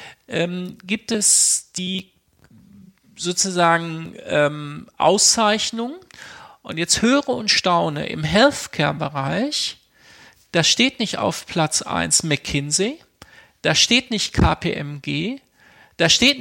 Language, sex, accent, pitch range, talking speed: German, male, German, 165-215 Hz, 95 wpm